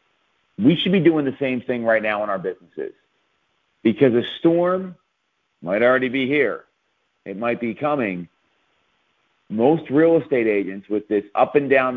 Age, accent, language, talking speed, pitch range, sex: 50-69, American, English, 160 wpm, 115-145 Hz, male